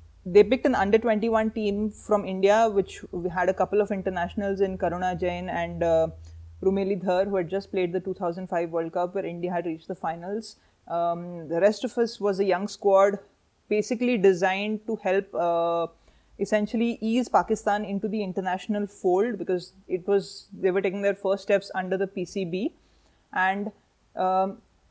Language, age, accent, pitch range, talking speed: English, 30-49, Indian, 175-210 Hz, 170 wpm